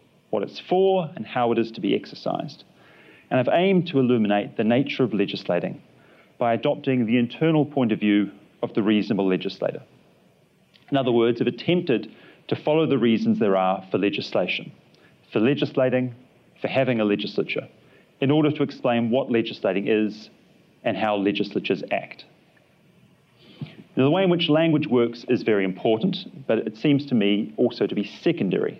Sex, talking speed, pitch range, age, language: male, 165 wpm, 110-150 Hz, 40-59, English